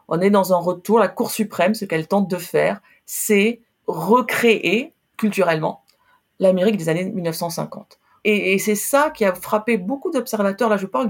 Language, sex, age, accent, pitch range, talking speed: French, female, 40-59, French, 180-230 Hz, 175 wpm